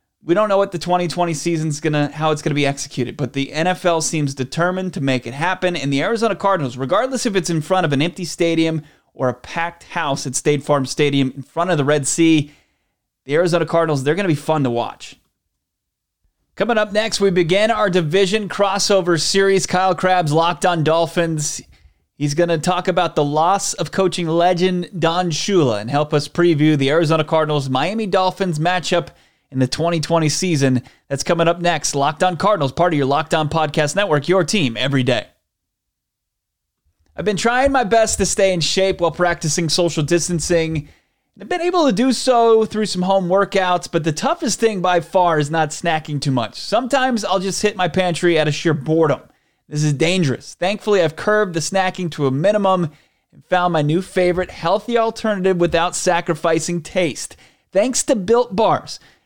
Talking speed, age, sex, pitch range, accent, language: 190 wpm, 30-49, male, 150-190 Hz, American, English